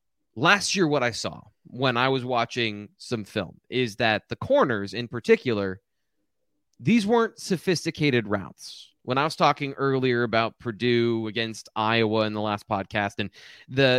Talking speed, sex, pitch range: 155 wpm, male, 120-155 Hz